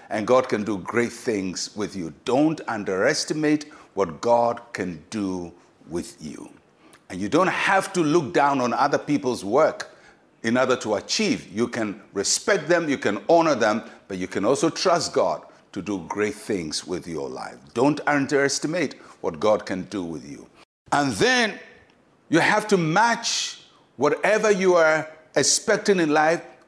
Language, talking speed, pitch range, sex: English, 160 wpm, 145-205 Hz, male